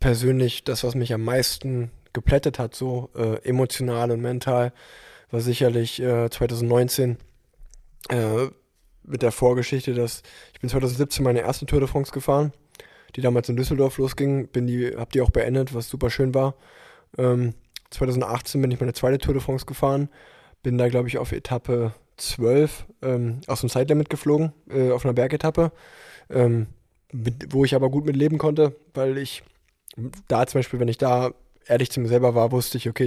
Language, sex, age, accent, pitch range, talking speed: German, male, 20-39, German, 120-135 Hz, 170 wpm